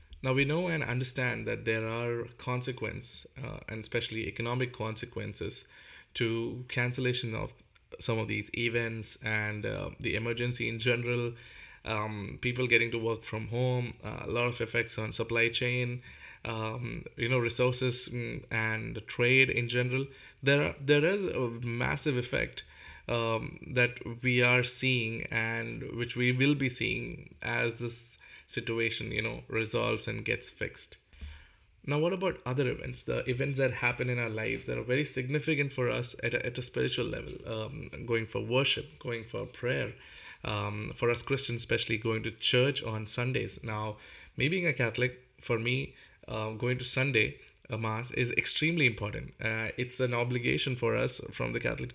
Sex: male